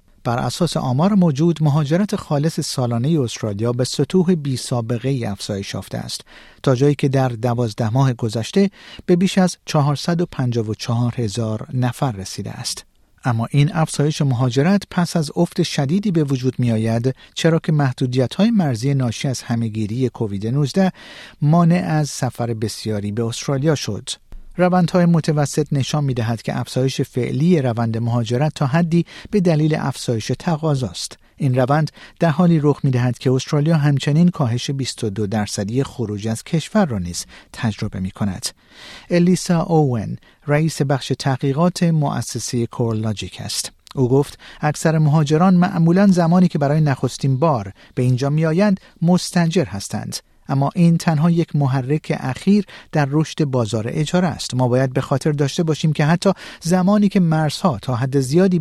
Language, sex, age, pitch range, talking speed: Persian, male, 50-69, 120-165 Hz, 150 wpm